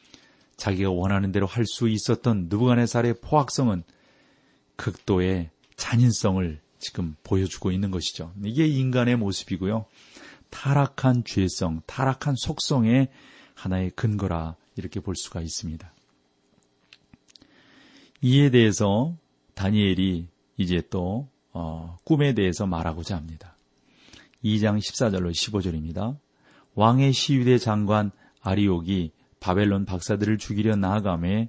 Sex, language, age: male, Korean, 40-59